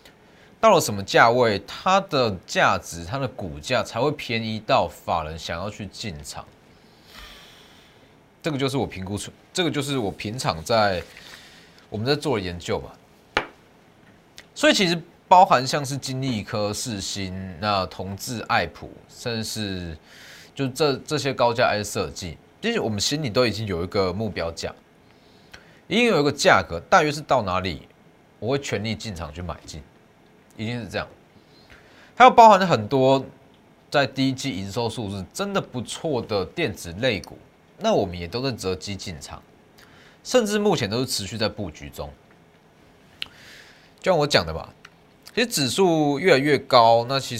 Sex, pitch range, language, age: male, 100-145 Hz, Chinese, 30-49